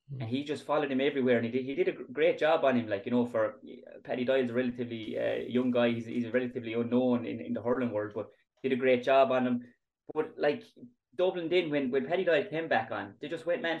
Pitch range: 120-140 Hz